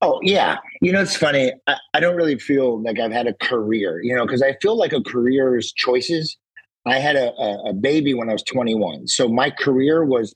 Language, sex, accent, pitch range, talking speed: English, male, American, 125-165 Hz, 230 wpm